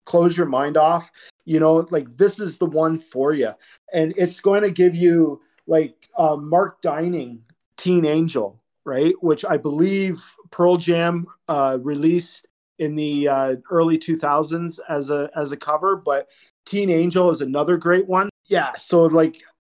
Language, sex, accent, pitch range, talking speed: English, male, American, 135-170 Hz, 160 wpm